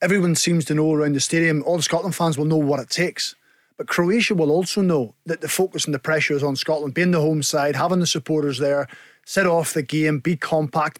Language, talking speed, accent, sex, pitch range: English, 240 wpm, British, male, 140-165 Hz